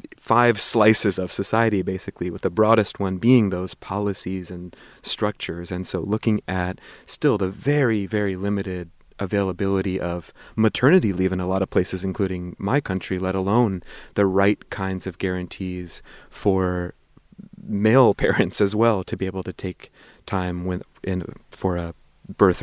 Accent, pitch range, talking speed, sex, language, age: American, 95-115 Hz, 150 wpm, male, English, 30-49